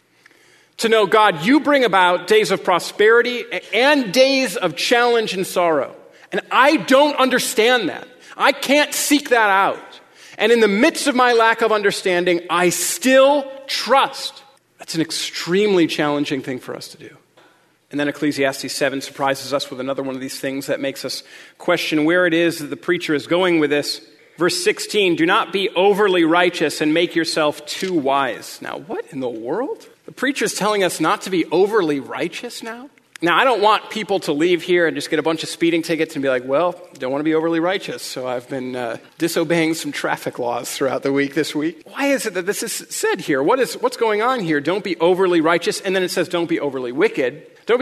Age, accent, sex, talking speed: 40-59, American, male, 205 wpm